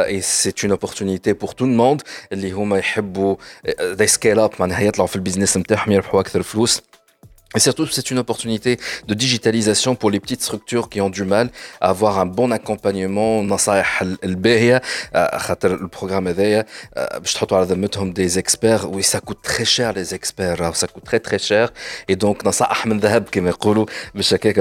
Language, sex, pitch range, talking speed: Arabic, male, 95-115 Hz, 160 wpm